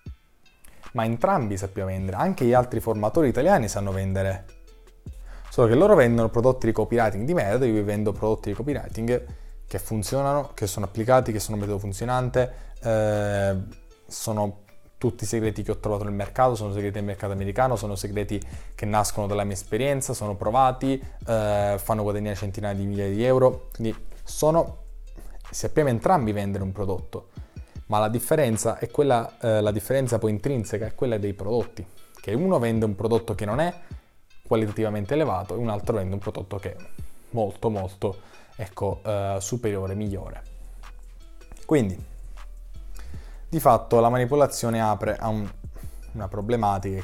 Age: 20-39